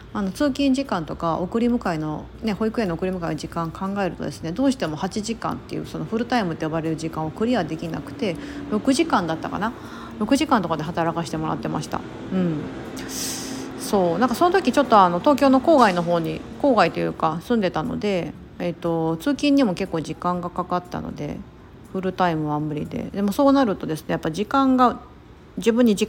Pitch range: 165-230 Hz